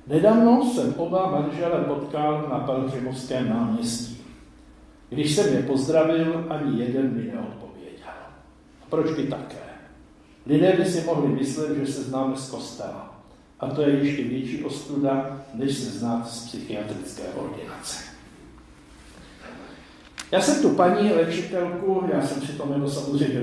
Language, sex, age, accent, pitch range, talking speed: Czech, male, 60-79, native, 130-170 Hz, 135 wpm